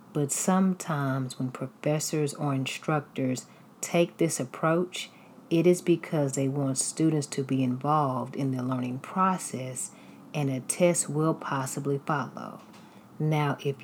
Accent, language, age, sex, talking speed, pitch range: American, English, 40-59, female, 130 wpm, 135-180 Hz